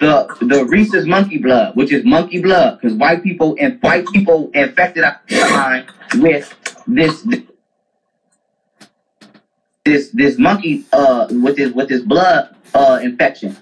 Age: 20-39